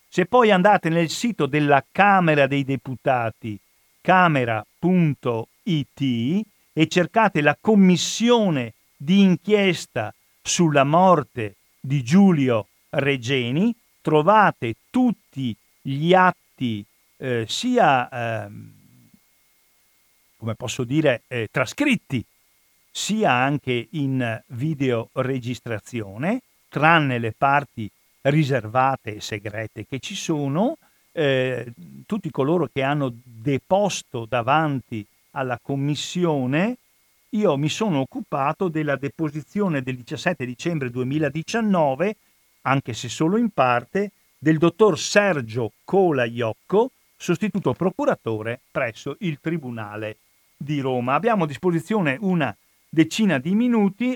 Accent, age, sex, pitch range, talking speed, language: native, 50-69, male, 125-185 Hz, 95 wpm, Italian